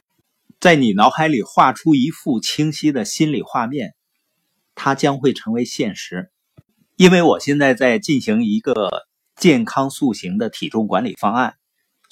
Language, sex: Chinese, male